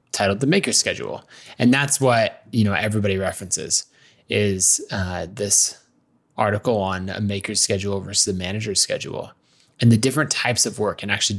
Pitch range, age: 100-130 Hz, 20-39